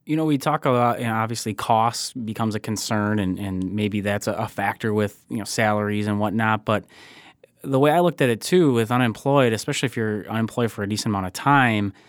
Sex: male